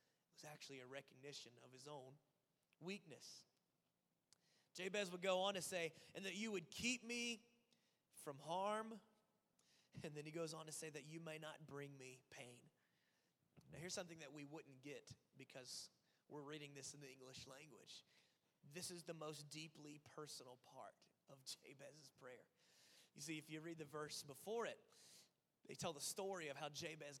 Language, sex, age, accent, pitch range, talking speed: English, male, 30-49, American, 155-195 Hz, 170 wpm